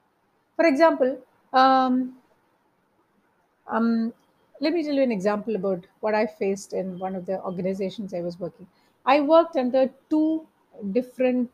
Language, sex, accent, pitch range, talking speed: English, female, Indian, 205-265 Hz, 140 wpm